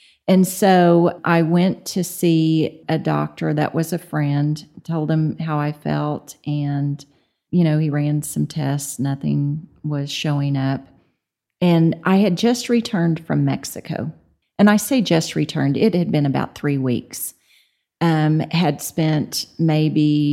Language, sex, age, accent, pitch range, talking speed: English, female, 40-59, American, 140-170 Hz, 150 wpm